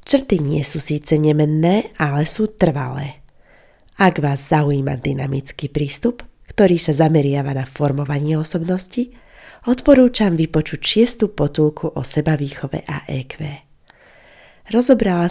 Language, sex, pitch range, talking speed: Slovak, female, 145-180 Hz, 115 wpm